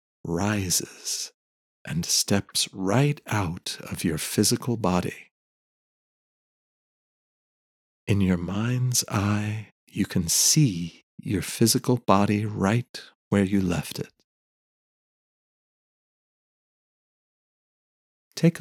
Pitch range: 90-120 Hz